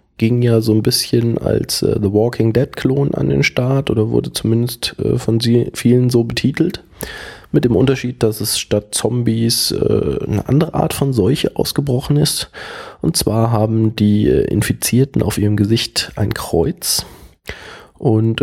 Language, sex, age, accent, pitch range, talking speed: German, male, 20-39, German, 105-120 Hz, 155 wpm